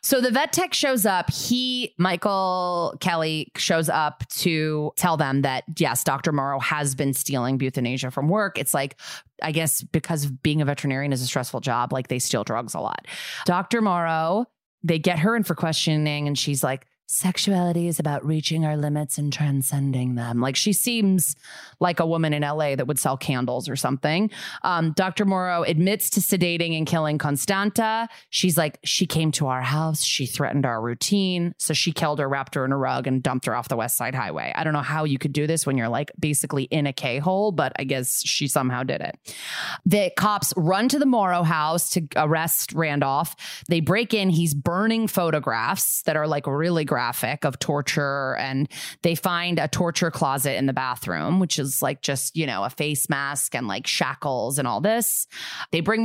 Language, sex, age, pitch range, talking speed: English, female, 20-39, 140-180 Hz, 200 wpm